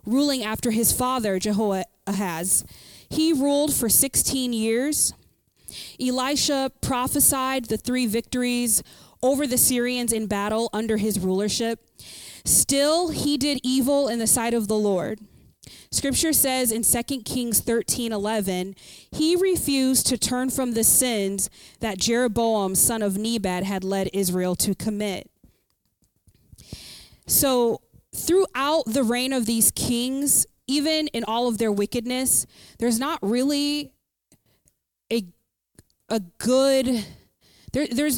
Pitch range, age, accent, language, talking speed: 215-270 Hz, 20-39, American, English, 120 wpm